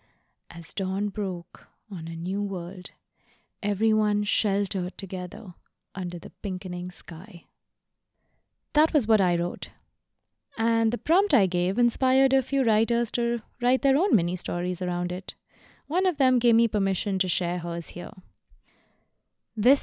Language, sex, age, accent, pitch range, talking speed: English, female, 20-39, Indian, 175-225 Hz, 140 wpm